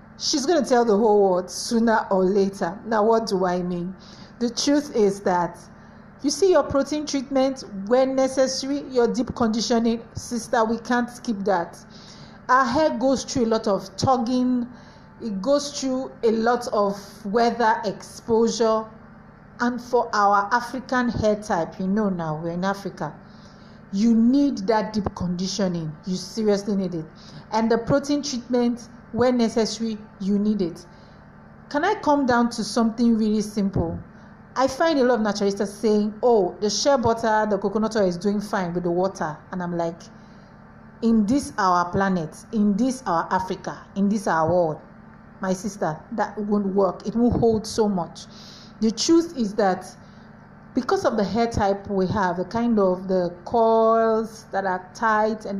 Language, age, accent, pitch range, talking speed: English, 50-69, Nigerian, 195-235 Hz, 165 wpm